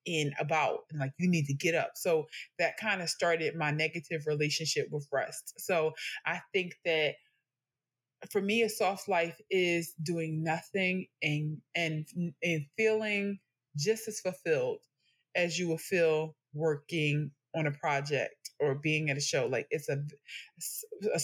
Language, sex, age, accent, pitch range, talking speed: English, female, 20-39, American, 155-205 Hz, 155 wpm